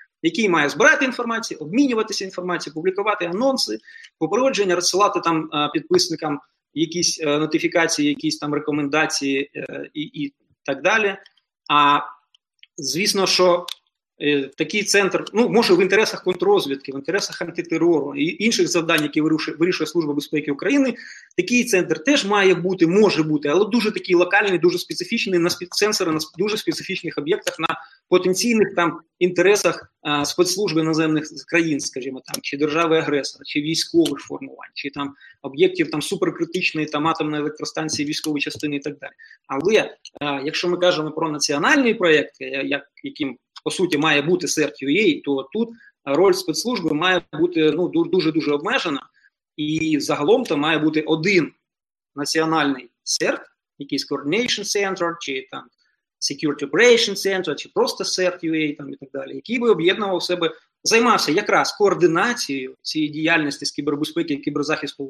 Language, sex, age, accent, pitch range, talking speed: Ukrainian, male, 20-39, native, 150-200 Hz, 140 wpm